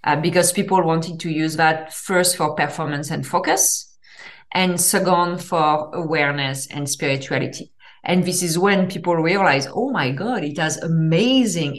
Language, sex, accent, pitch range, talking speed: English, female, French, 155-185 Hz, 155 wpm